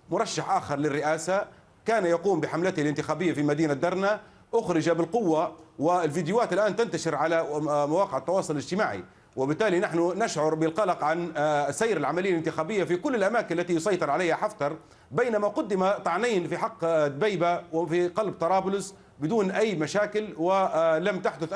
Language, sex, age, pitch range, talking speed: Arabic, male, 40-59, 160-210 Hz, 135 wpm